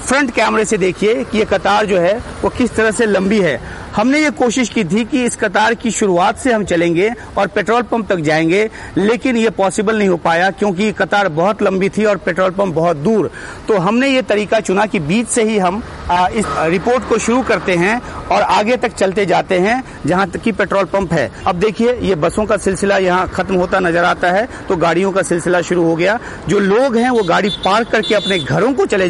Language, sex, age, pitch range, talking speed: Hindi, male, 40-59, 185-225 Hz, 220 wpm